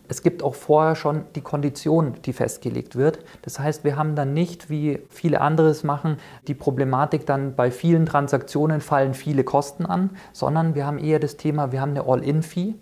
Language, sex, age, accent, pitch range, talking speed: German, male, 40-59, German, 130-155 Hz, 185 wpm